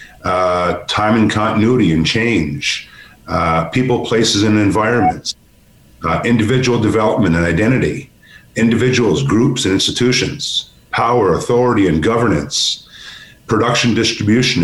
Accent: American